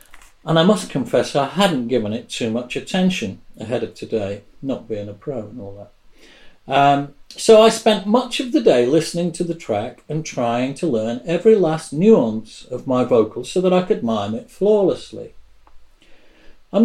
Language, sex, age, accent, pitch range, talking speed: English, male, 50-69, British, 120-180 Hz, 180 wpm